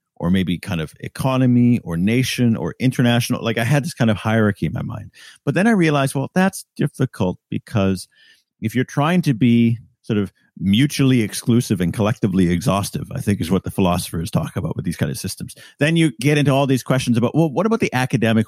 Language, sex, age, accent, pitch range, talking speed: English, male, 50-69, American, 105-140 Hz, 210 wpm